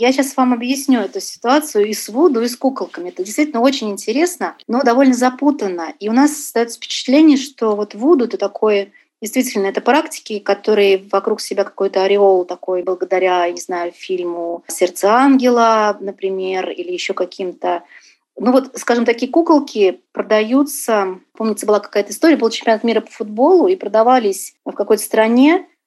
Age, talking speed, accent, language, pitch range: 30-49, 160 wpm, native, Russian, 195-260 Hz